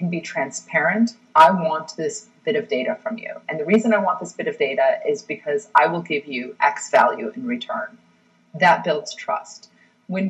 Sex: female